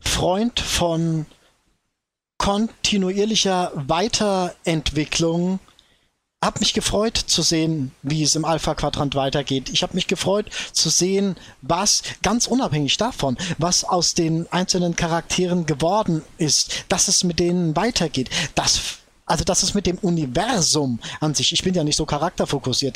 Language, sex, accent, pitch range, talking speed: German, male, German, 155-195 Hz, 135 wpm